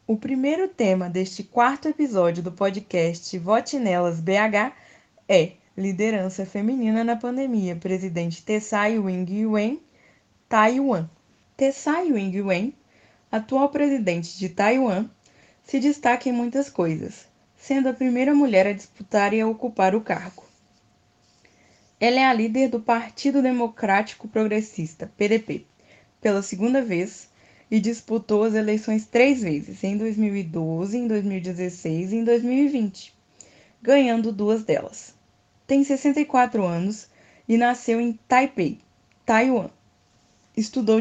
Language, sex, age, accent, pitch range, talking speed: Portuguese, female, 10-29, Brazilian, 190-240 Hz, 115 wpm